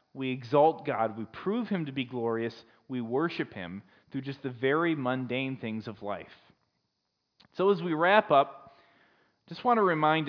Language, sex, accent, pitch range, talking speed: English, male, American, 135-195 Hz, 175 wpm